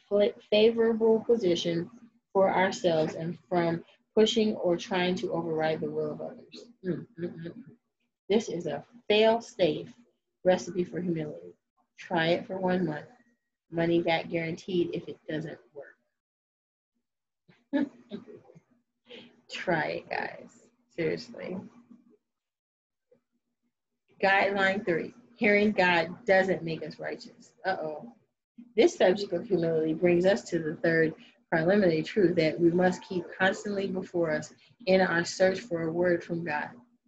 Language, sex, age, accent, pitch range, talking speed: English, female, 30-49, American, 170-225 Hz, 125 wpm